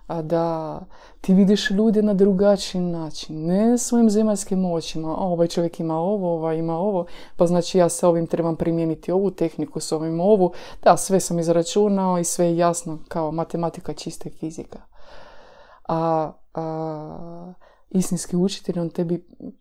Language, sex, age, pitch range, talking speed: Croatian, female, 20-39, 165-200 Hz, 155 wpm